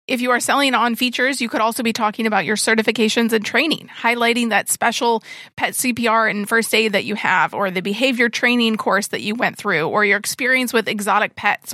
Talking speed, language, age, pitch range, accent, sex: 215 wpm, English, 30-49, 210-245 Hz, American, female